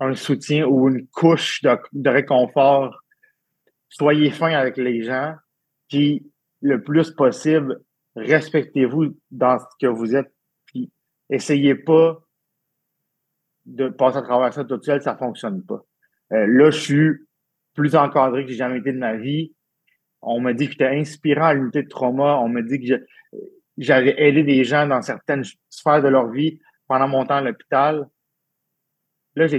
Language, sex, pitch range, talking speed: French, male, 130-155 Hz, 165 wpm